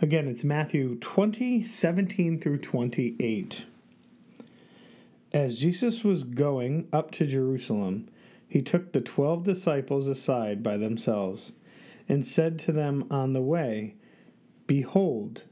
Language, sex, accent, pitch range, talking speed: English, male, American, 125-170 Hz, 115 wpm